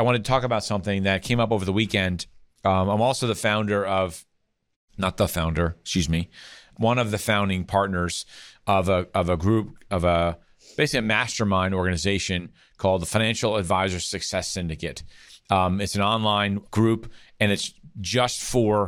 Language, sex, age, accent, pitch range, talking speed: English, male, 40-59, American, 90-105 Hz, 170 wpm